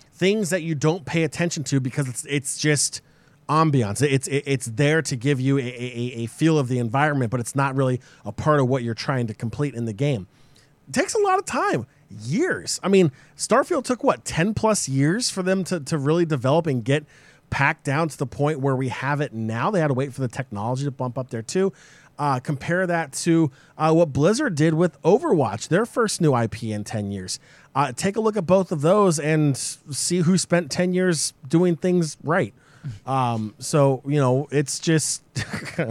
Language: English